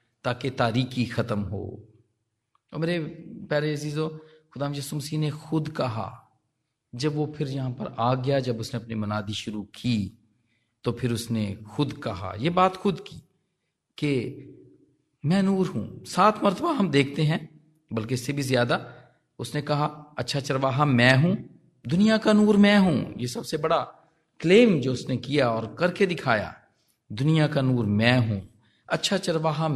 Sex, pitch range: male, 120-165 Hz